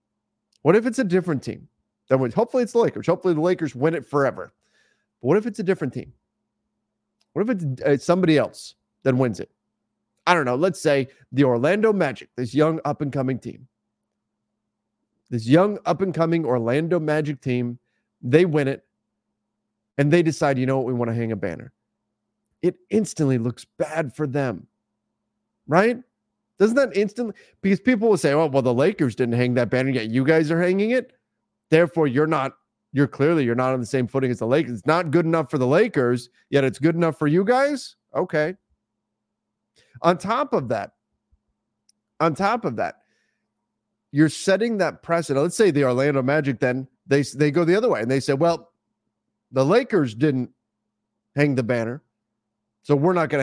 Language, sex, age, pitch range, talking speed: English, male, 30-49, 125-175 Hz, 180 wpm